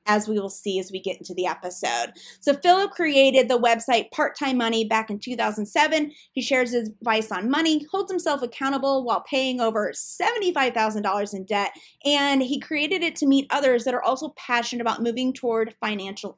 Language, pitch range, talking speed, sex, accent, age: English, 225-295 Hz, 185 wpm, female, American, 30-49